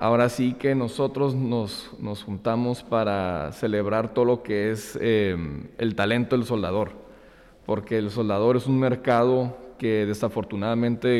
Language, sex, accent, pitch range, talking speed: Spanish, male, Mexican, 100-120 Hz, 140 wpm